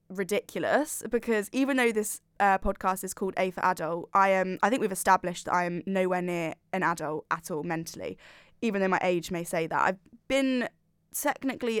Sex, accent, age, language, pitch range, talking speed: female, British, 10-29, English, 180-215 Hz, 195 wpm